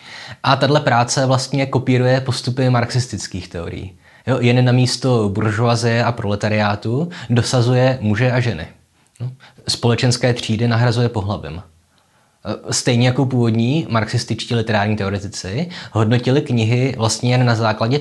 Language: Czech